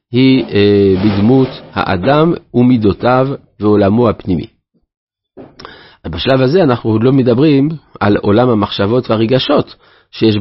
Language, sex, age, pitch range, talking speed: Hebrew, male, 50-69, 105-135 Hz, 90 wpm